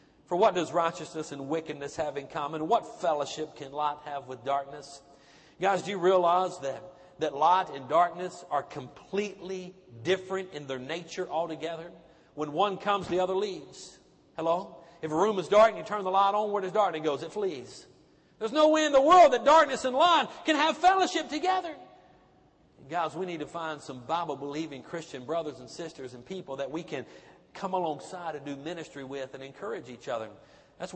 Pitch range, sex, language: 155-225 Hz, male, English